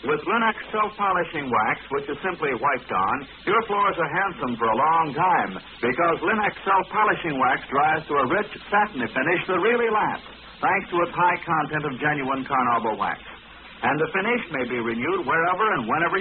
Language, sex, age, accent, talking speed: English, male, 60-79, American, 180 wpm